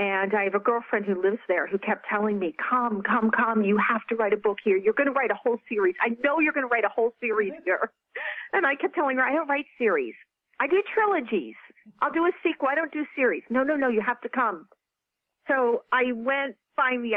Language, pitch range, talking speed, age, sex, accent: English, 195-235 Hz, 245 wpm, 40-59, female, American